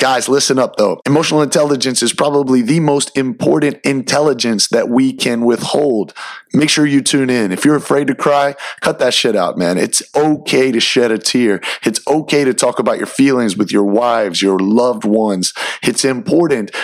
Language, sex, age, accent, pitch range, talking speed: English, male, 30-49, American, 115-145 Hz, 185 wpm